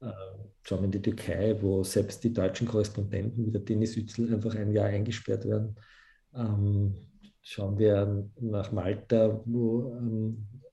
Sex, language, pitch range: male, German, 100-115 Hz